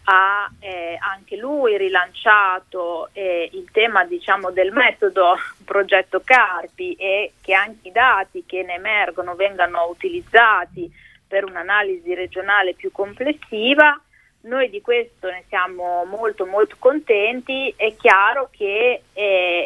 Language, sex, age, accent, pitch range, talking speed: Italian, female, 30-49, native, 180-220 Hz, 120 wpm